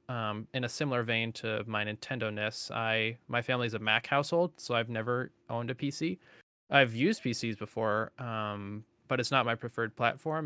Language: English